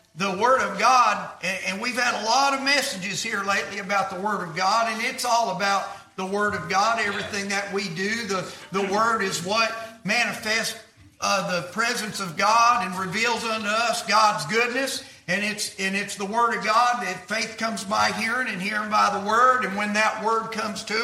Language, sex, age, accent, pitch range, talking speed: English, male, 50-69, American, 200-245 Hz, 205 wpm